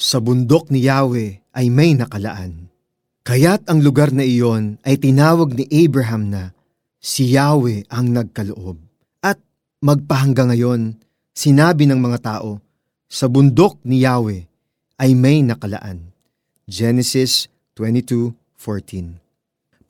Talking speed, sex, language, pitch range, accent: 110 wpm, male, Filipino, 115-145 Hz, native